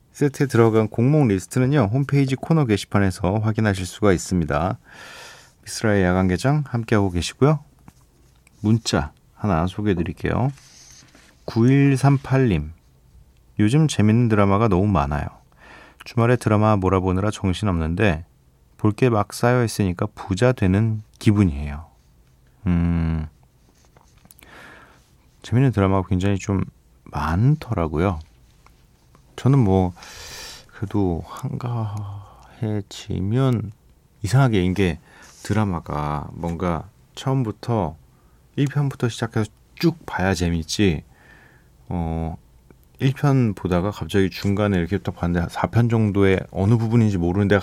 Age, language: 30-49, Korean